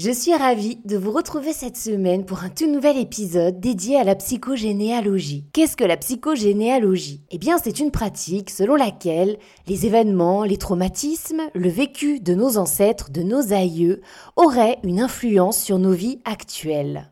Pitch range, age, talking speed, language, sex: 195-275 Hz, 20-39, 165 wpm, French, female